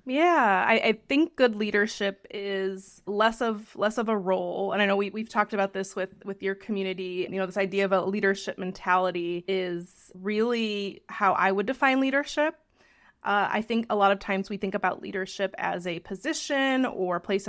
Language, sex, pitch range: English, female, 190-225 Hz